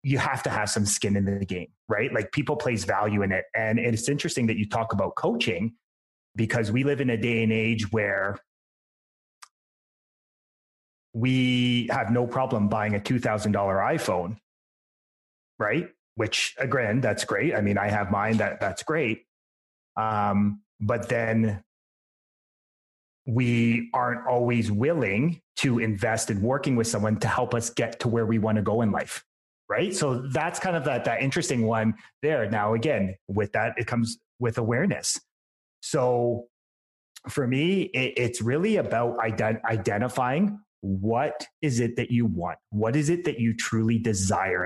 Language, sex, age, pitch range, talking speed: English, male, 30-49, 105-125 Hz, 160 wpm